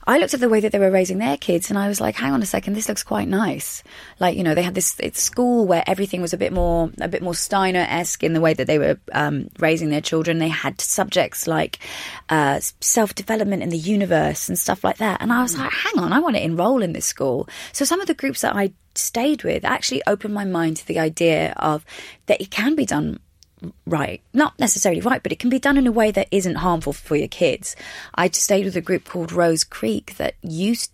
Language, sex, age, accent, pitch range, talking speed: English, female, 20-39, British, 160-205 Hz, 245 wpm